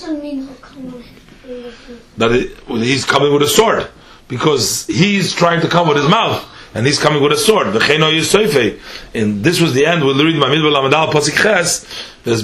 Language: English